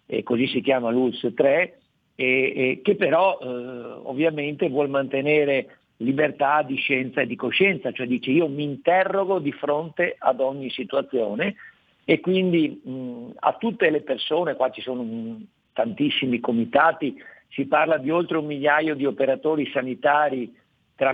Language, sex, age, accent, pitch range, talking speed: Italian, male, 50-69, native, 130-160 Hz, 150 wpm